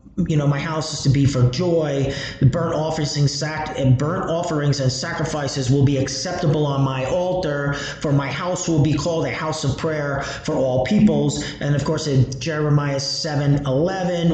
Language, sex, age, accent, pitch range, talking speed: English, male, 30-49, American, 140-170 Hz, 165 wpm